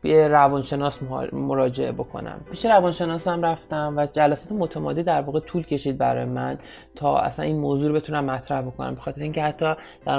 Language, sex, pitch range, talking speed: Persian, male, 135-160 Hz, 165 wpm